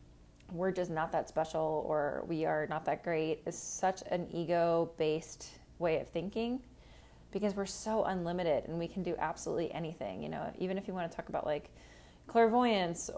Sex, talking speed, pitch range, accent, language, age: female, 180 wpm, 155-190 Hz, American, English, 20-39